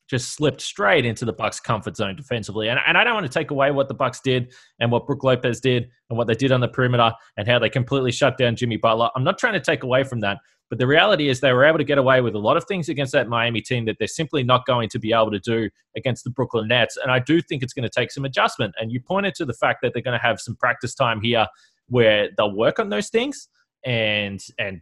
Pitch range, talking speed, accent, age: 115-140 Hz, 280 wpm, Australian, 20-39